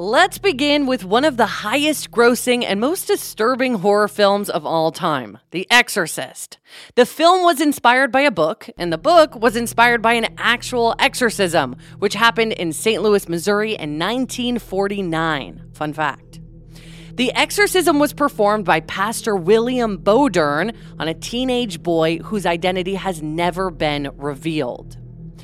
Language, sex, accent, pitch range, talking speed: English, female, American, 165-245 Hz, 145 wpm